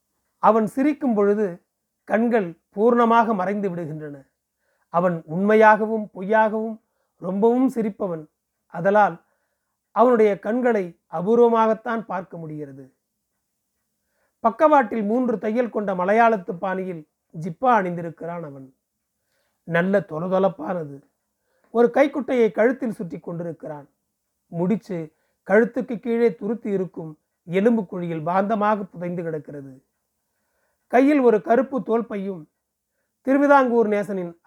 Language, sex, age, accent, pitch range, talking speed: Tamil, male, 40-59, native, 175-230 Hz, 85 wpm